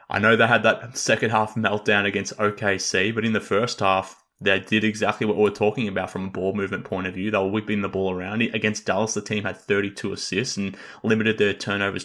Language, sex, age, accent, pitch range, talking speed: English, male, 20-39, Australian, 100-115 Hz, 235 wpm